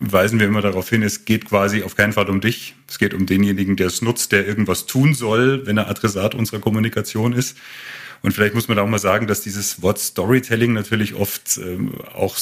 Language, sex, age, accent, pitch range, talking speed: German, male, 40-59, German, 95-115 Hz, 220 wpm